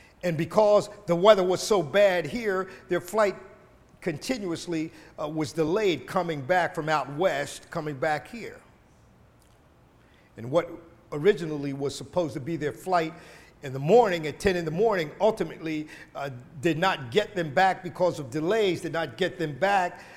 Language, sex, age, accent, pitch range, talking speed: English, male, 50-69, American, 155-205 Hz, 160 wpm